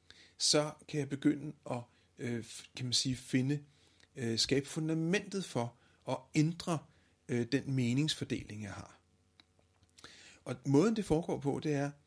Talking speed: 125 wpm